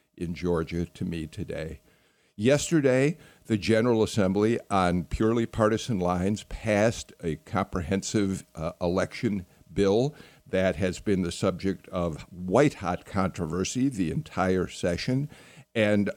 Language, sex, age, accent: English, male, 50-69, American